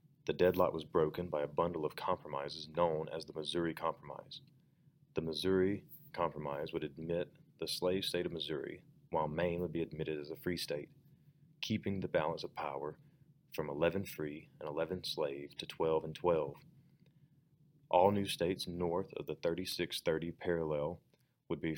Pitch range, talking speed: 80-95 Hz, 160 wpm